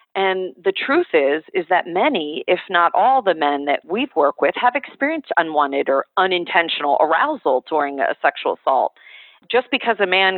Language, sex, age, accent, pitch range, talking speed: English, female, 40-59, American, 180-260 Hz, 175 wpm